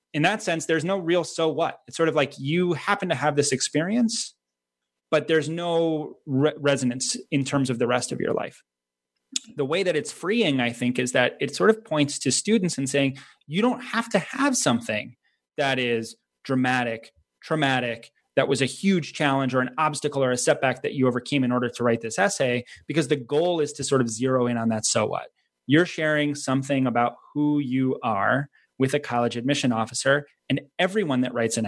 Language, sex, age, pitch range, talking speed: English, male, 30-49, 120-155 Hz, 205 wpm